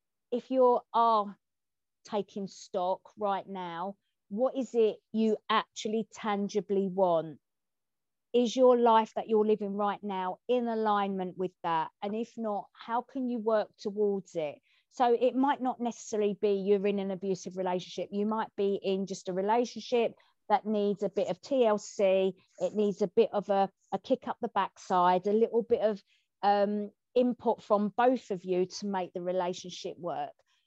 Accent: British